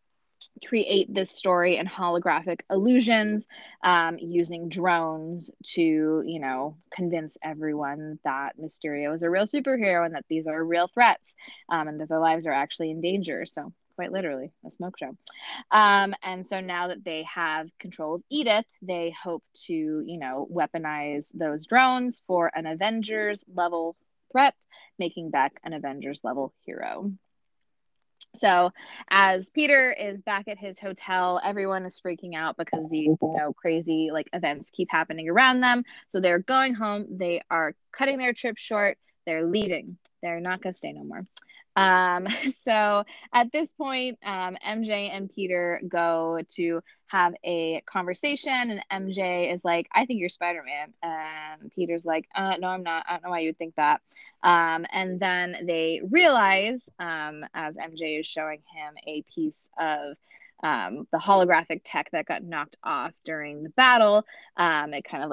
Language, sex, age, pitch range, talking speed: English, female, 20-39, 160-205 Hz, 160 wpm